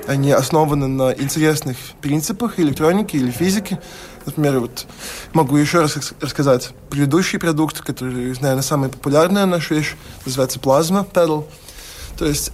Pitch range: 130-155 Hz